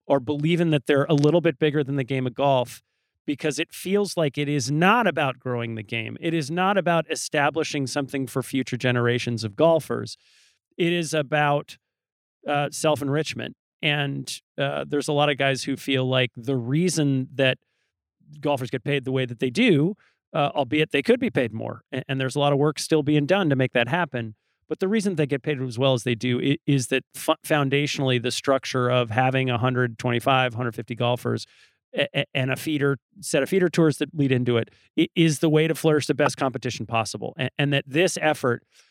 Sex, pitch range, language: male, 125-150 Hz, English